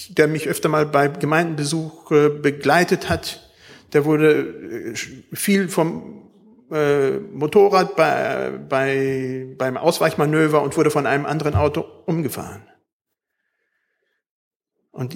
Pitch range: 130-175 Hz